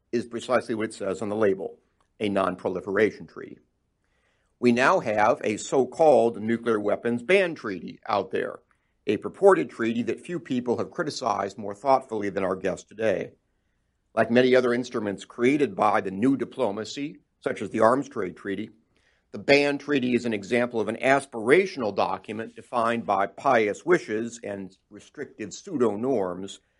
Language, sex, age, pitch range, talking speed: English, male, 60-79, 100-125 Hz, 150 wpm